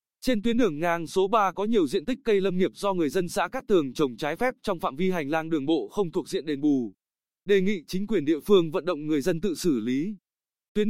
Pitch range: 160-210 Hz